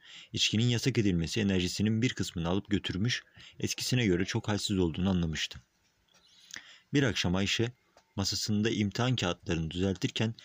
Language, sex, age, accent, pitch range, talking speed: Turkish, male, 50-69, native, 90-115 Hz, 120 wpm